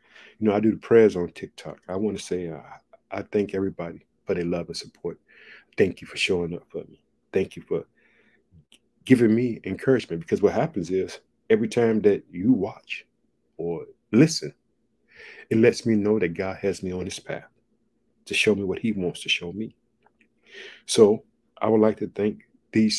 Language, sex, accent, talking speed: English, male, American, 190 wpm